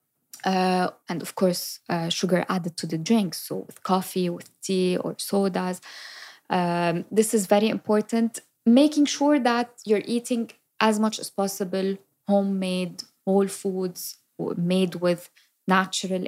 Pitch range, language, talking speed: 180-215 Hz, English, 135 wpm